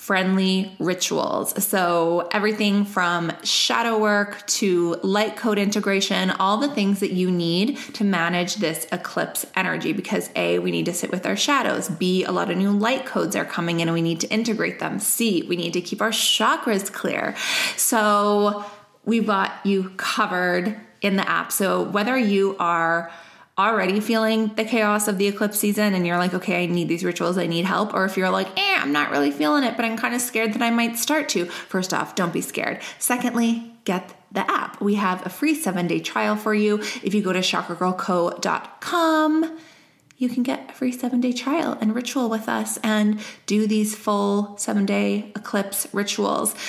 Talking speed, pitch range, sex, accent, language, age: 195 wpm, 180-220 Hz, female, American, English, 20-39